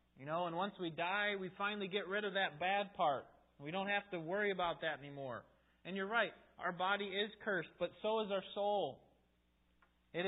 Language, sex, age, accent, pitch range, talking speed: English, male, 30-49, American, 135-195 Hz, 205 wpm